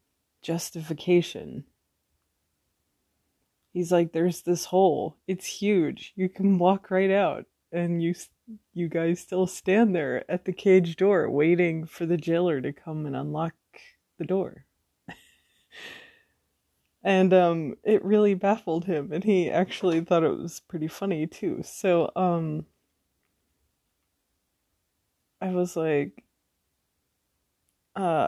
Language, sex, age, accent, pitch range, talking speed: English, female, 20-39, American, 155-195 Hz, 115 wpm